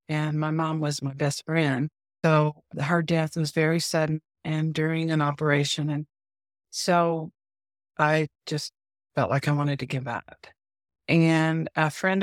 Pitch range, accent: 145-165 Hz, American